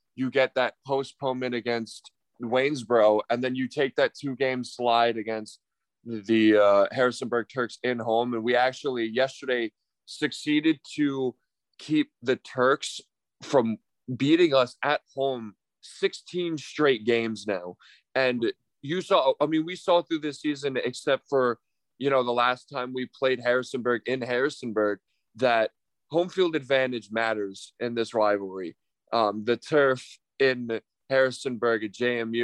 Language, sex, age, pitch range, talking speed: English, male, 20-39, 115-130 Hz, 140 wpm